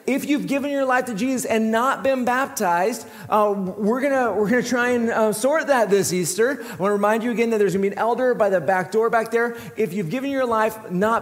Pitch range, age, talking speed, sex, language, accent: 180-235 Hz, 40-59, 260 wpm, male, English, American